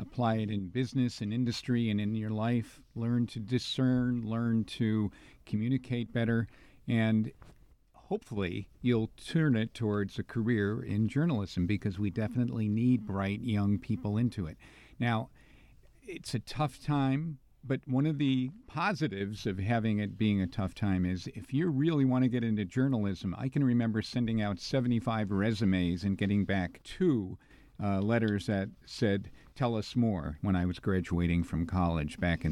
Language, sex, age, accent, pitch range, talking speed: English, male, 50-69, American, 105-130 Hz, 160 wpm